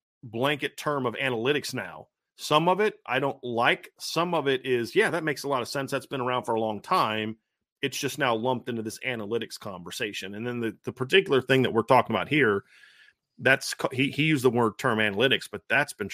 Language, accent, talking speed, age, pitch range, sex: English, American, 220 wpm, 30-49, 115-140 Hz, male